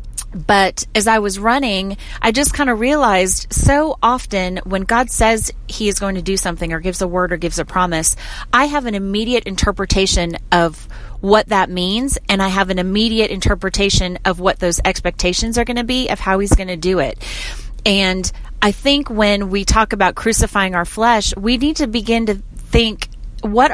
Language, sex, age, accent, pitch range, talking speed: English, female, 30-49, American, 180-225 Hz, 190 wpm